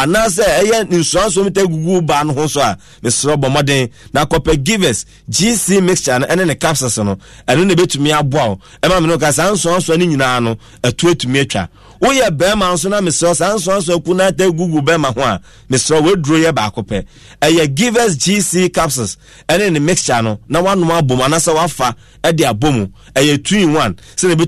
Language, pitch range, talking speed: English, 130-180 Hz, 185 wpm